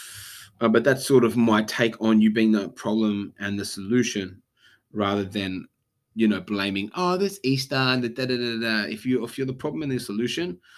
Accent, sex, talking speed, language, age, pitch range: Australian, male, 210 wpm, English, 20-39, 105-125 Hz